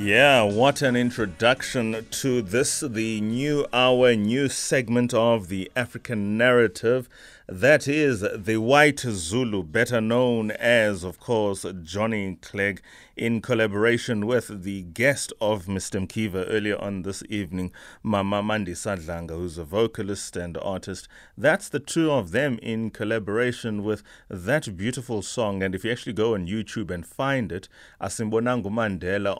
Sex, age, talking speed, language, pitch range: male, 30-49, 140 wpm, English, 90-115 Hz